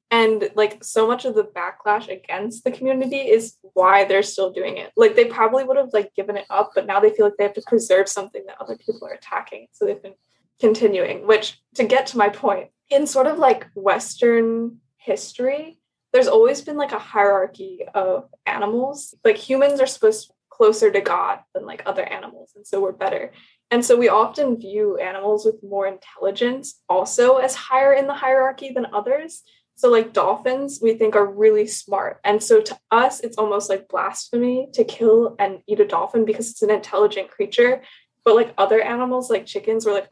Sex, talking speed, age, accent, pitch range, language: female, 200 wpm, 10-29, American, 205-275 Hz, English